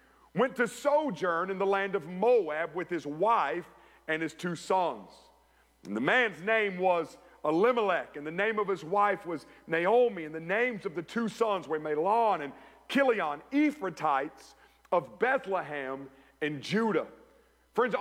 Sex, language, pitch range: male, English, 190-275 Hz